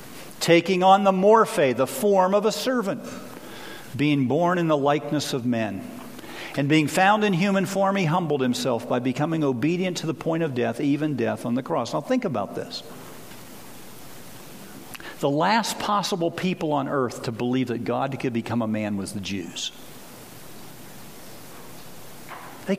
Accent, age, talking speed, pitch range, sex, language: American, 50-69, 160 wpm, 145-220 Hz, male, English